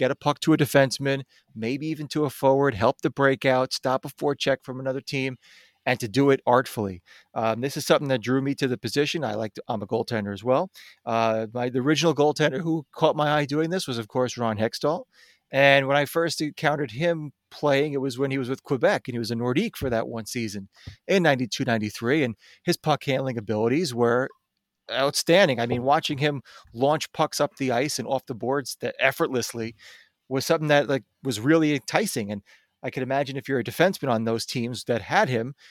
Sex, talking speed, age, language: male, 215 wpm, 30-49, English